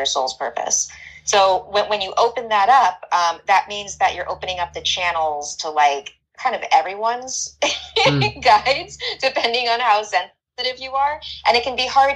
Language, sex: English, female